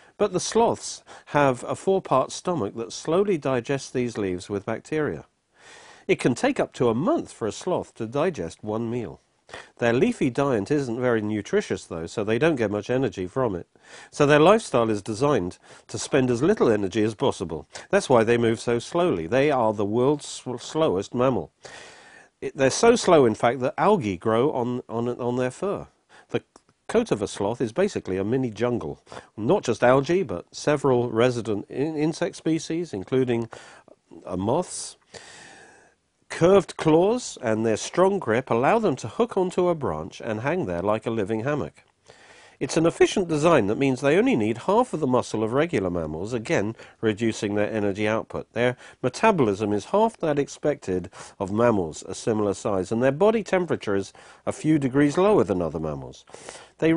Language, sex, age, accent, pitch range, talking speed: English, male, 50-69, British, 110-155 Hz, 175 wpm